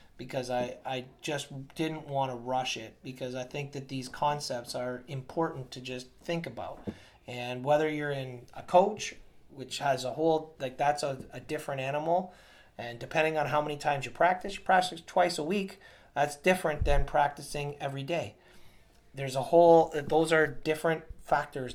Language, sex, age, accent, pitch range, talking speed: English, male, 30-49, American, 130-155 Hz, 175 wpm